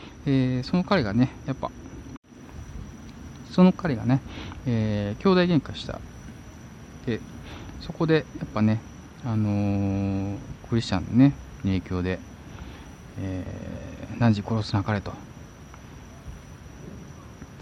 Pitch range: 95-125 Hz